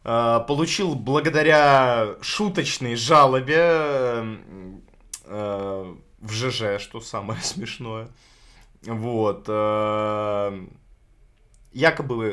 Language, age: Russian, 20-39